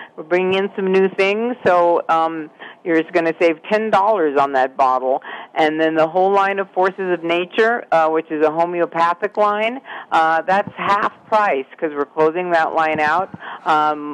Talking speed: 185 wpm